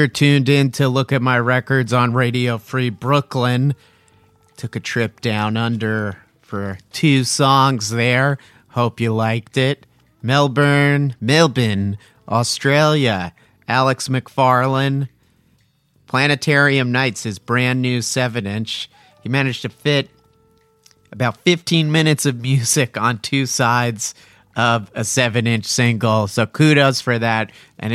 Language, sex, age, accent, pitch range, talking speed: English, male, 40-59, American, 110-135 Hz, 125 wpm